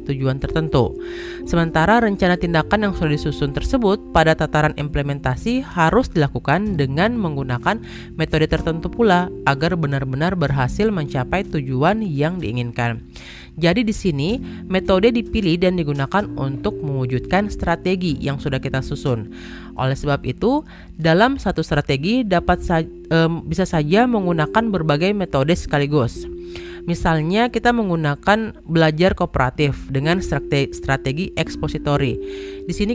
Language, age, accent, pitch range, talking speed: Indonesian, 30-49, native, 140-185 Hz, 120 wpm